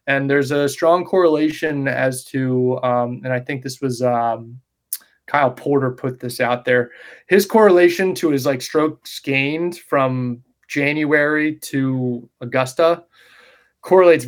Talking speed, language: 135 wpm, English